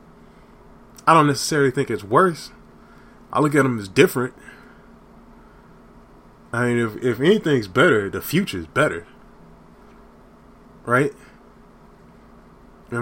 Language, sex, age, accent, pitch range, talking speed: English, male, 20-39, American, 115-135 Hz, 105 wpm